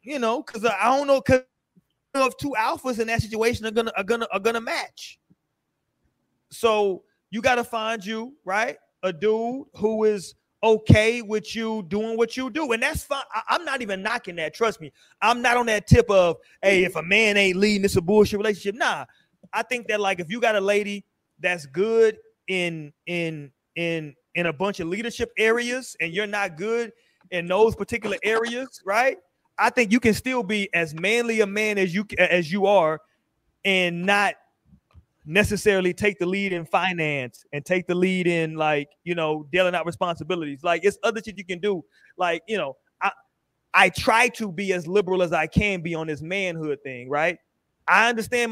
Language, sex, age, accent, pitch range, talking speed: English, male, 30-49, American, 175-225 Hz, 195 wpm